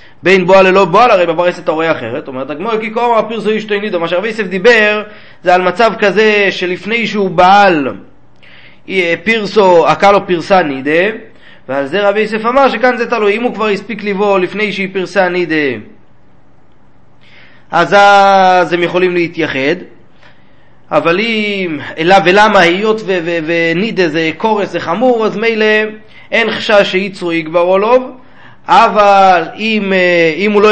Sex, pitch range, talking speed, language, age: male, 170-210 Hz, 155 wpm, Hebrew, 30-49